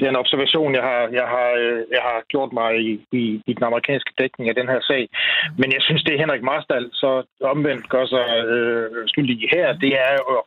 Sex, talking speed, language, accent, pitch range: male, 220 wpm, Danish, native, 125-155 Hz